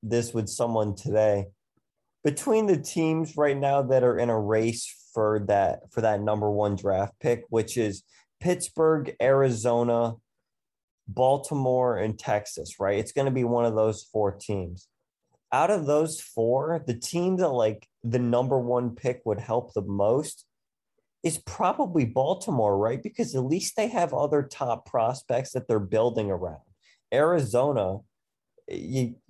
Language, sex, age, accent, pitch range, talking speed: English, male, 20-39, American, 105-140 Hz, 150 wpm